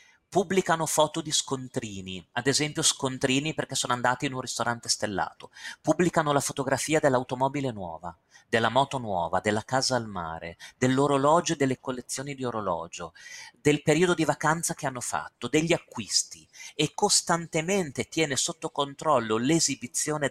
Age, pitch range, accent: 30-49, 115-155 Hz, native